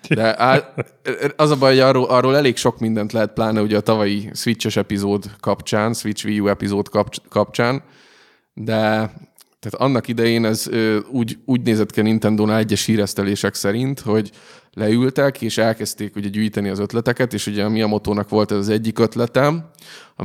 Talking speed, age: 165 wpm, 20-39